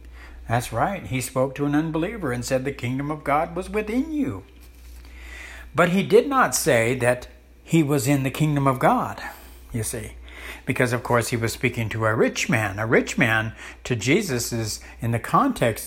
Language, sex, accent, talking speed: English, male, American, 190 wpm